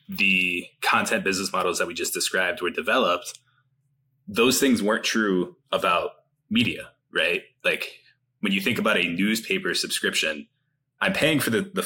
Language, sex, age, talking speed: English, male, 20-39, 150 wpm